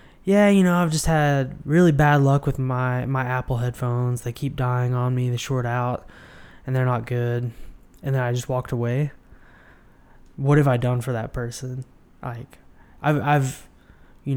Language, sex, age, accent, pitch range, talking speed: English, male, 20-39, American, 120-140 Hz, 180 wpm